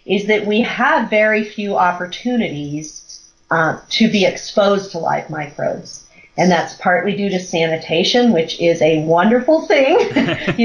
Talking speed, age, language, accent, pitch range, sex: 145 wpm, 40-59, English, American, 170-230 Hz, female